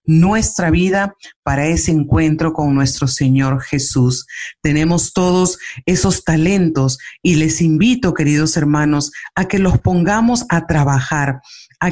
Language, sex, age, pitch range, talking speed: Spanish, female, 40-59, 150-185 Hz, 125 wpm